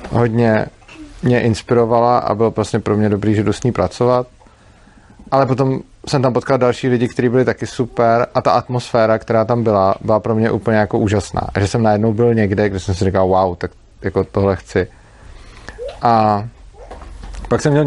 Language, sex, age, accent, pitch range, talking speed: Czech, male, 30-49, native, 105-125 Hz, 190 wpm